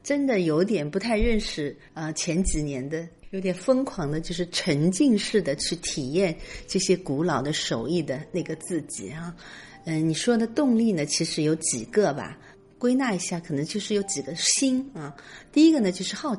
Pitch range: 155-200 Hz